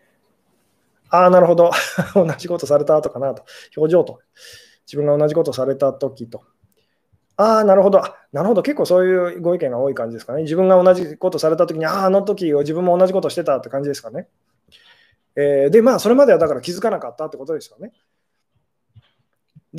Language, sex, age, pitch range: Japanese, male, 20-39, 150-230 Hz